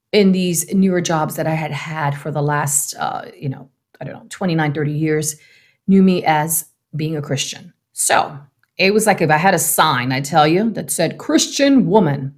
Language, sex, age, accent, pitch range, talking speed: English, female, 40-59, American, 160-245 Hz, 205 wpm